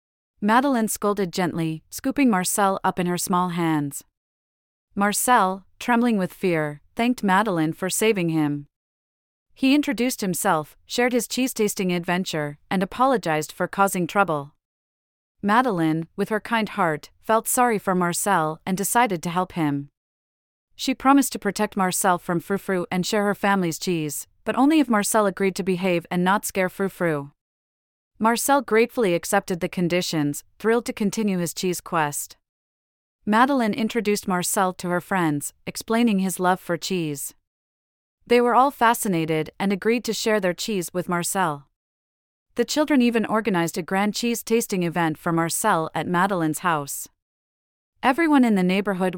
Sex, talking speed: female, 145 wpm